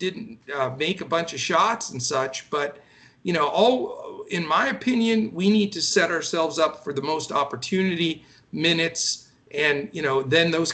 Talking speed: 180 wpm